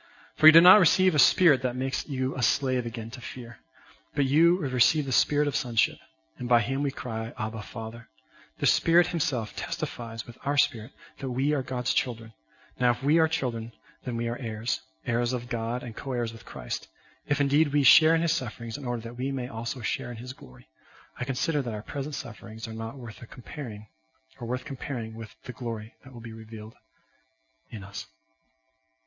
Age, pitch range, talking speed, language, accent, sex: 40-59, 115-155 Hz, 200 wpm, English, American, male